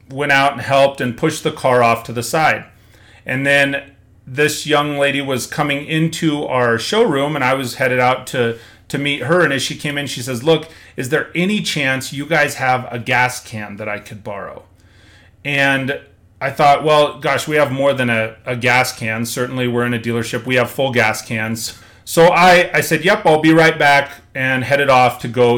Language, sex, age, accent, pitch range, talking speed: English, male, 30-49, American, 120-150 Hz, 210 wpm